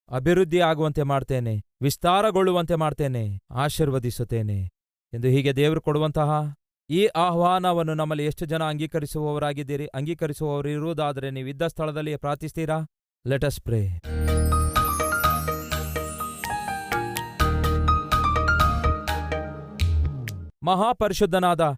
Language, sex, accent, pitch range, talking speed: Kannada, male, native, 130-180 Hz, 65 wpm